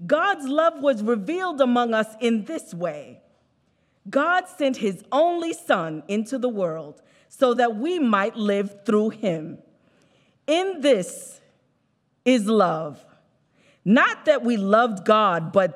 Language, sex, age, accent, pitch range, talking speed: English, female, 40-59, American, 185-280 Hz, 130 wpm